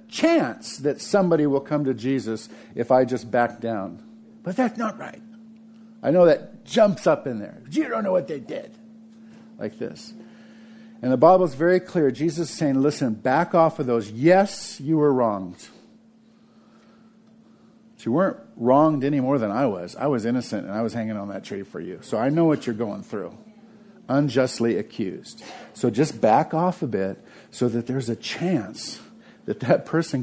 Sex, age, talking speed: male, 50-69, 185 wpm